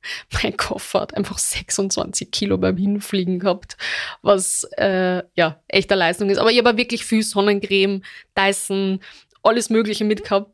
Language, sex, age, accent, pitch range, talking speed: German, female, 20-39, German, 190-215 Hz, 150 wpm